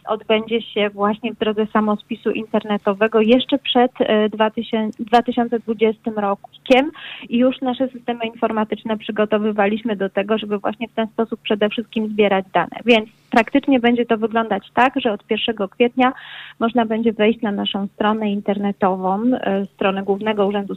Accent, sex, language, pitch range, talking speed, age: native, female, Polish, 200-235 Hz, 140 wpm, 30-49